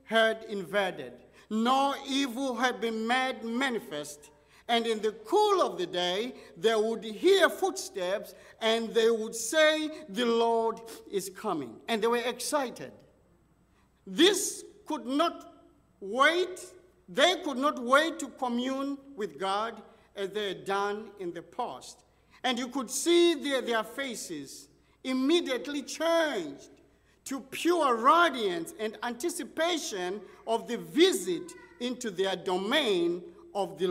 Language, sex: English, male